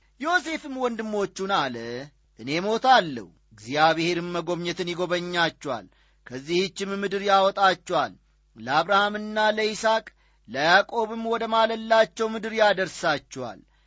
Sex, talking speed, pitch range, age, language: male, 80 wpm, 155-220 Hz, 40-59, Amharic